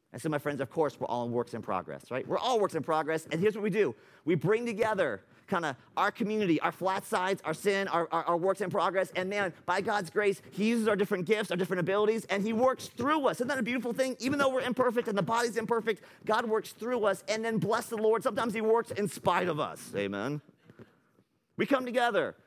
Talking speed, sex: 245 wpm, male